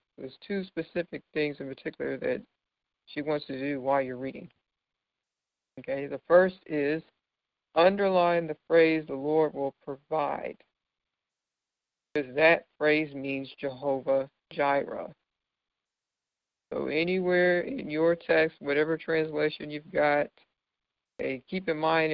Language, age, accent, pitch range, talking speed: English, 60-79, American, 140-160 Hz, 115 wpm